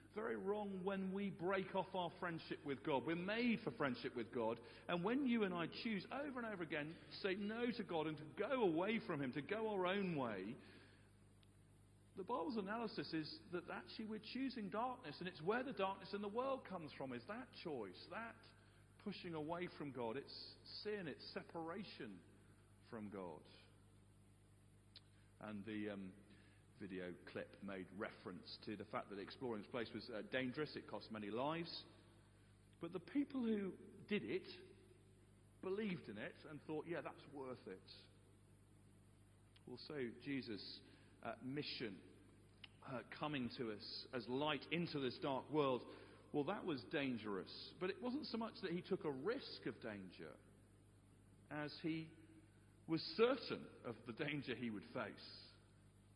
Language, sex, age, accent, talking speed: English, male, 40-59, British, 160 wpm